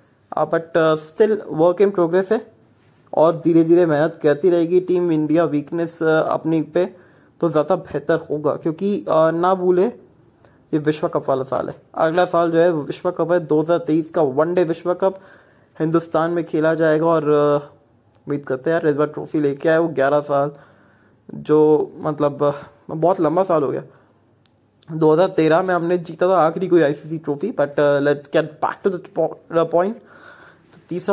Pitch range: 145-175 Hz